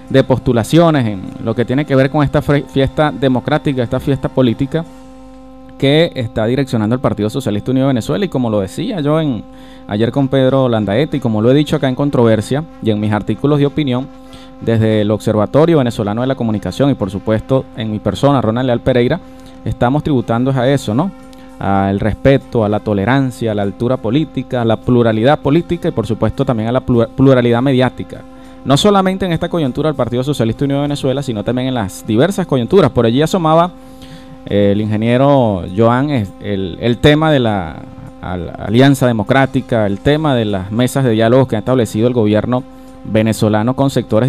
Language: Spanish